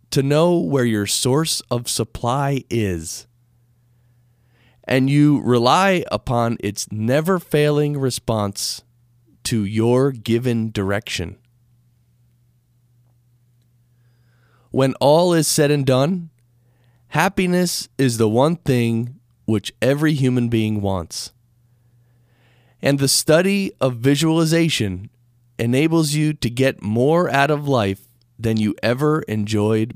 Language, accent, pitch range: English, American, 120-140 Hz